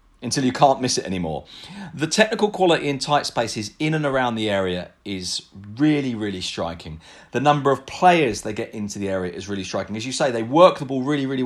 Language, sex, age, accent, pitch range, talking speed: English, male, 40-59, British, 110-160 Hz, 220 wpm